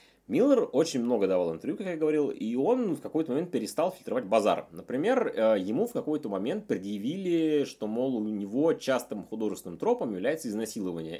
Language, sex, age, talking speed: Russian, male, 20-39, 165 wpm